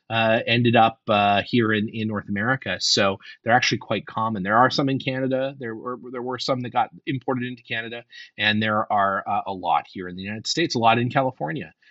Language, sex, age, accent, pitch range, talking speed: English, male, 30-49, American, 115-150 Hz, 220 wpm